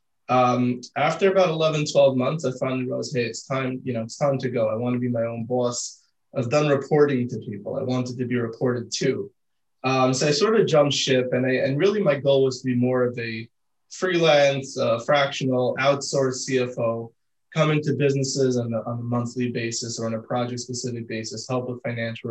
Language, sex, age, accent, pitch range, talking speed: English, male, 20-39, American, 115-140 Hz, 205 wpm